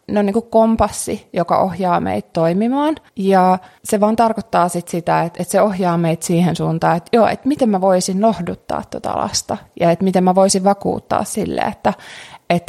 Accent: native